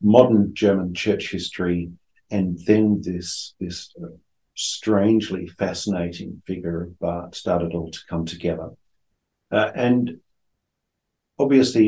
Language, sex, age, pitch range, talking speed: English, male, 50-69, 90-110 Hz, 110 wpm